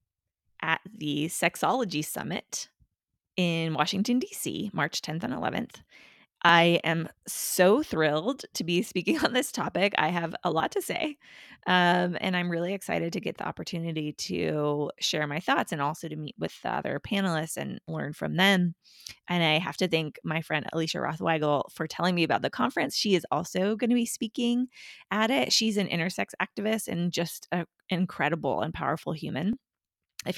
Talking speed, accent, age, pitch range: 170 wpm, American, 20-39, 160-225 Hz